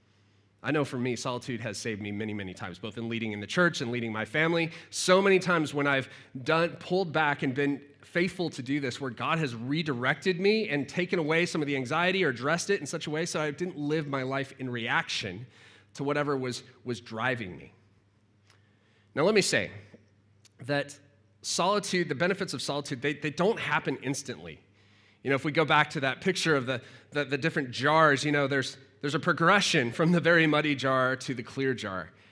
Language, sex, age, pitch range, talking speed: English, male, 30-49, 120-160 Hz, 210 wpm